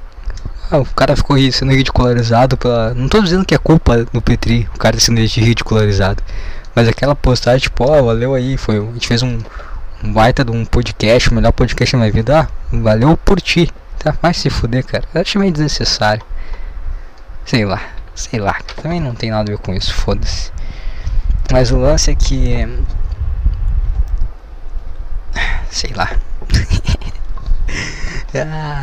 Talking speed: 155 wpm